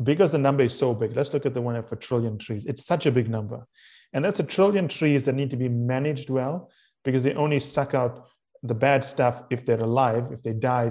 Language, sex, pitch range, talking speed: English, male, 120-145 Hz, 240 wpm